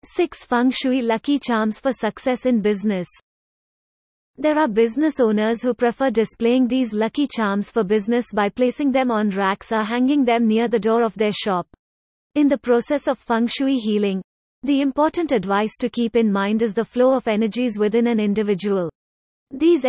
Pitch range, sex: 215-260 Hz, female